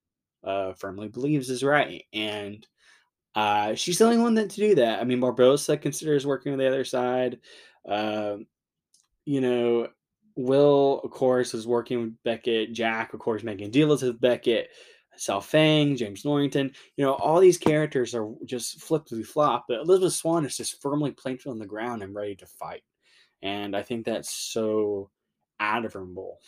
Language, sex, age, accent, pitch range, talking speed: English, male, 10-29, American, 115-150 Hz, 170 wpm